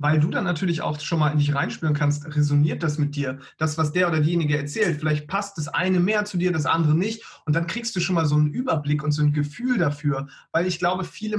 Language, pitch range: German, 150-180 Hz